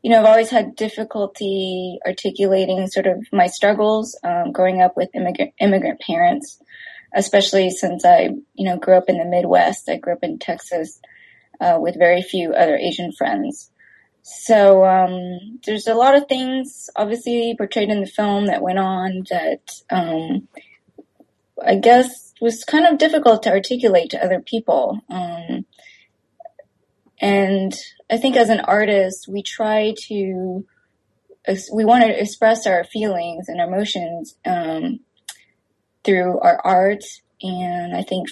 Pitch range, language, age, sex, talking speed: 185-235 Hz, English, 20-39, female, 145 wpm